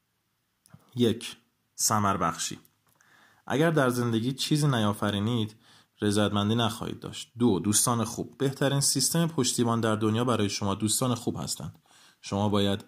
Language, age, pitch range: Persian, 20-39, 105-135 Hz